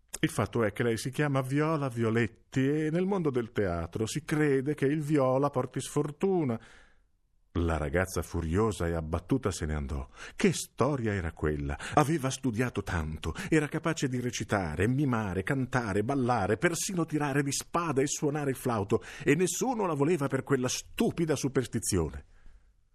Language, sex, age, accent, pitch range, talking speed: Italian, male, 50-69, native, 80-130 Hz, 155 wpm